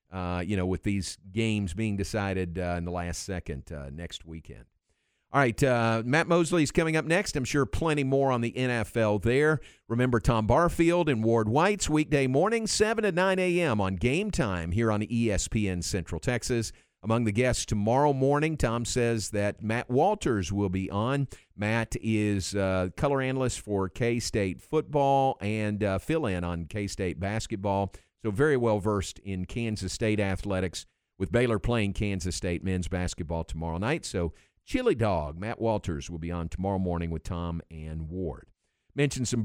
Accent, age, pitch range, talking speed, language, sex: American, 50-69, 95-125 Hz, 175 wpm, English, male